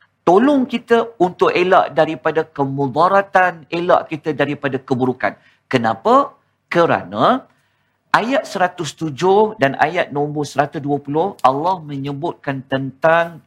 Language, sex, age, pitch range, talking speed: Malayalam, male, 50-69, 150-215 Hz, 95 wpm